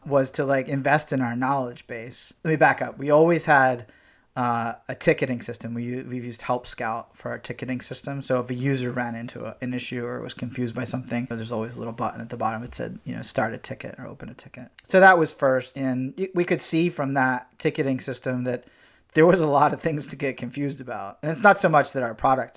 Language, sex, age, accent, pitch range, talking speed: English, male, 30-49, American, 120-145 Hz, 240 wpm